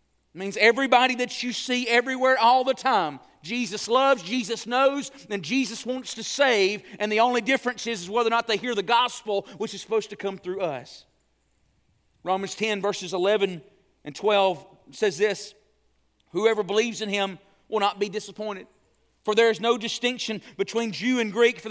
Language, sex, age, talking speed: English, male, 40-59, 175 wpm